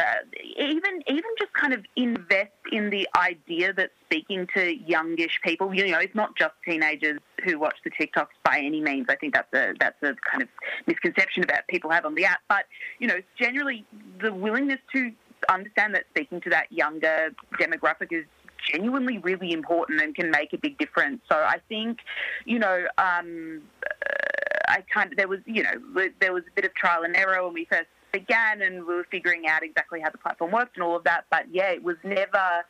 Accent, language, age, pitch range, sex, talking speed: Australian, English, 30-49, 165-235 Hz, female, 200 wpm